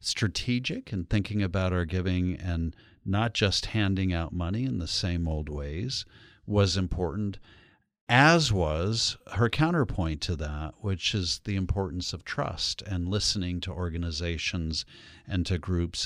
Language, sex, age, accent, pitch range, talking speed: English, male, 50-69, American, 90-110 Hz, 140 wpm